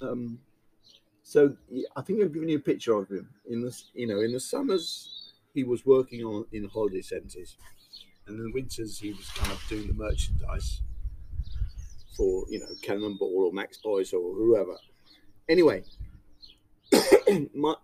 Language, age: English, 50-69